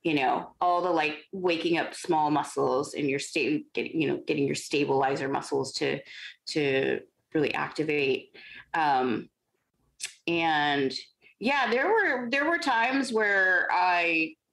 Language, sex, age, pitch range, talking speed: English, female, 30-49, 155-255 Hz, 130 wpm